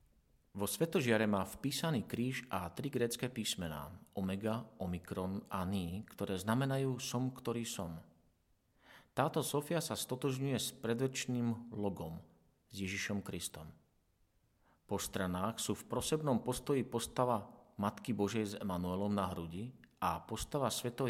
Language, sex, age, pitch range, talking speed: Slovak, male, 40-59, 95-120 Hz, 125 wpm